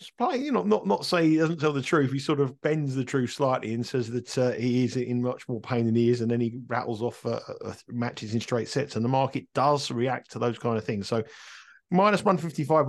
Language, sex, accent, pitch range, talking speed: English, male, British, 110-130 Hz, 250 wpm